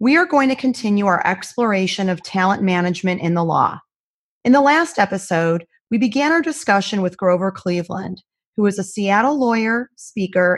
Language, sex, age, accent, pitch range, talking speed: English, female, 30-49, American, 185-235 Hz, 170 wpm